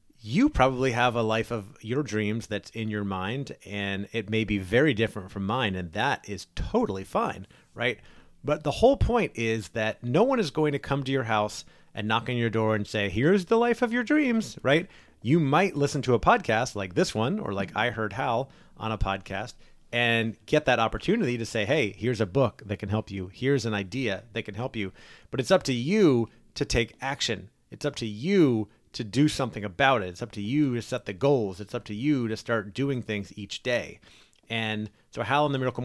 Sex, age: male, 30-49